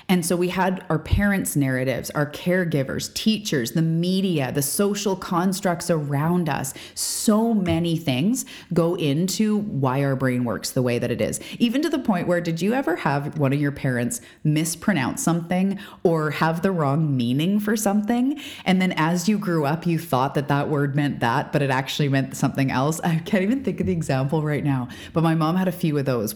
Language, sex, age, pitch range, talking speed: English, female, 30-49, 140-185 Hz, 205 wpm